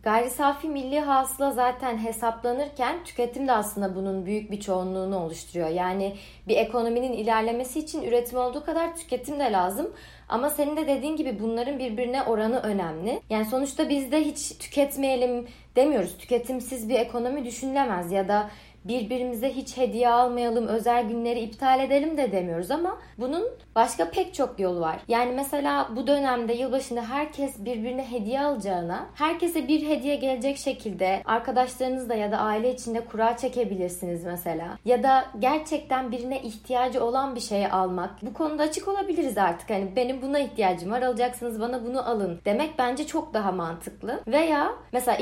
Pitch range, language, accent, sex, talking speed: 220-280 Hz, Turkish, native, female, 155 wpm